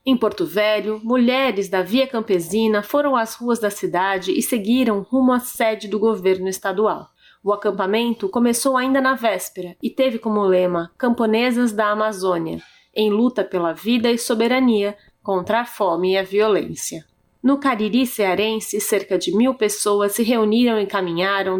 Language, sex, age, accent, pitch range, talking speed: Portuguese, female, 30-49, Brazilian, 190-235 Hz, 155 wpm